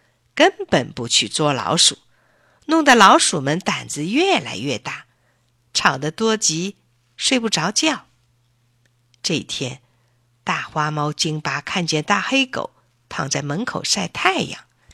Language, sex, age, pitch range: Chinese, female, 50-69, 125-205 Hz